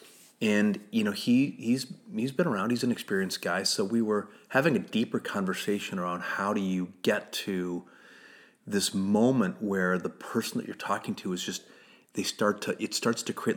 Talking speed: 195 wpm